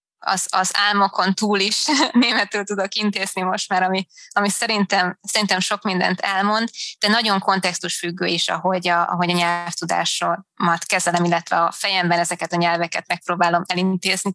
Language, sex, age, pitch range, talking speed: Hungarian, female, 20-39, 175-200 Hz, 150 wpm